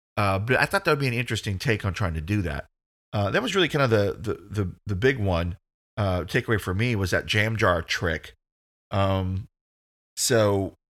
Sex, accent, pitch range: male, American, 95-130 Hz